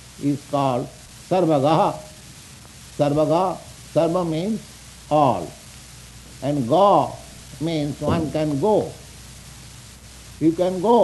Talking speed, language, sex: 85 wpm, English, male